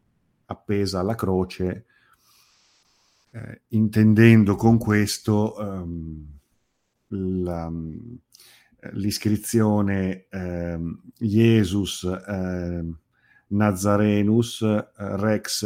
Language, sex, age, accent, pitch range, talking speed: Italian, male, 50-69, native, 90-110 Hz, 60 wpm